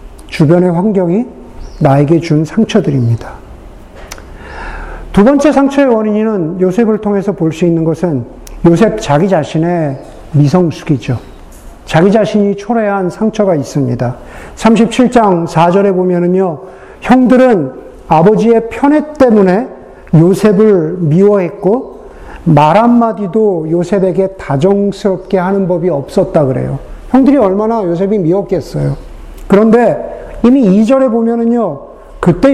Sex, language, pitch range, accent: male, Korean, 170-230 Hz, native